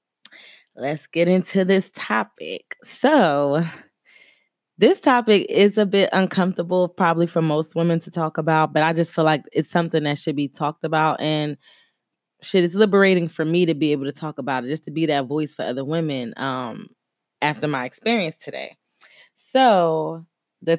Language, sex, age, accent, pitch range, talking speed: English, female, 20-39, American, 145-175 Hz, 170 wpm